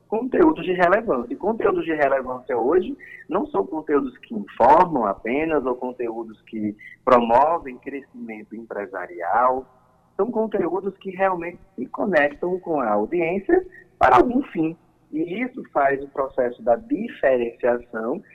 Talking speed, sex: 130 wpm, male